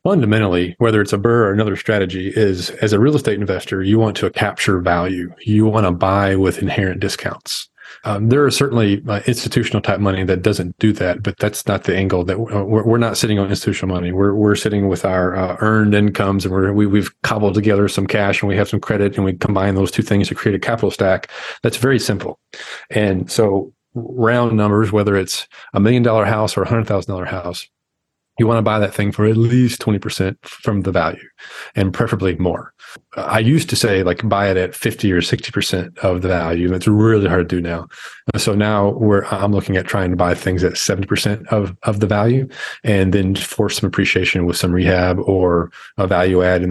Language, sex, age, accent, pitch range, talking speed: English, male, 40-59, American, 95-110 Hz, 215 wpm